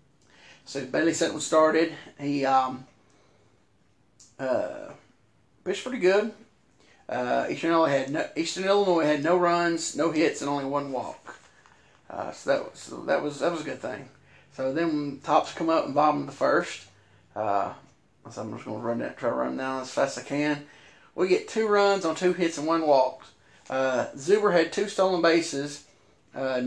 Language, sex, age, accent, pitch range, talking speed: English, male, 30-49, American, 140-175 Hz, 185 wpm